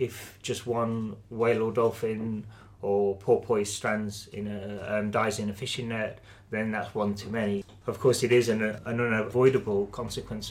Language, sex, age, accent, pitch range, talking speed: English, male, 30-49, British, 100-115 Hz, 170 wpm